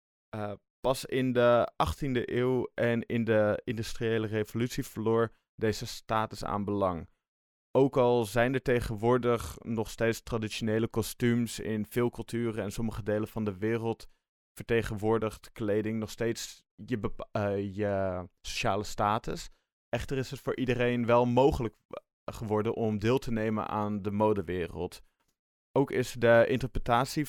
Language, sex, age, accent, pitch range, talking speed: Dutch, male, 20-39, Dutch, 105-120 Hz, 140 wpm